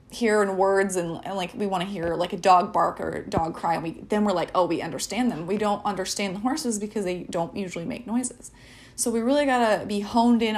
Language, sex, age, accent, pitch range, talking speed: English, female, 20-39, American, 200-255 Hz, 255 wpm